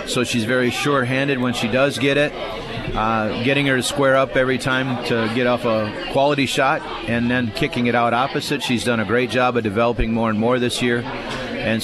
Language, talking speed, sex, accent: English, 215 wpm, male, American